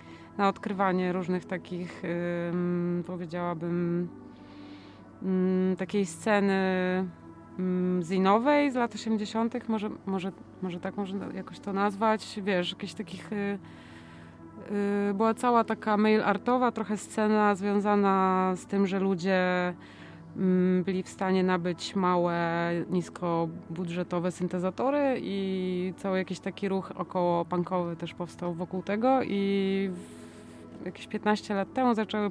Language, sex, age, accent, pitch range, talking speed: Polish, female, 20-39, native, 175-200 Hz, 125 wpm